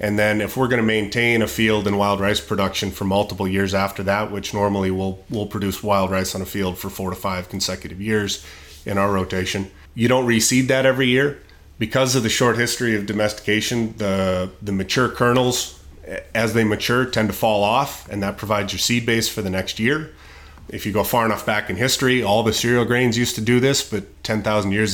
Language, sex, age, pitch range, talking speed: English, male, 30-49, 100-115 Hz, 220 wpm